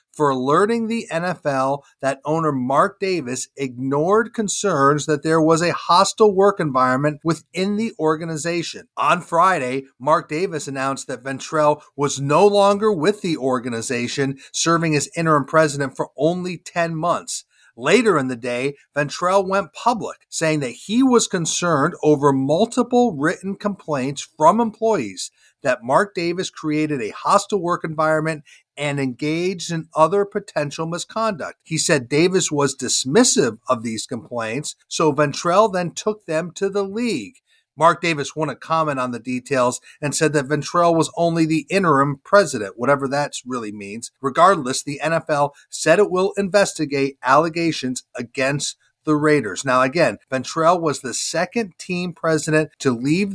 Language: English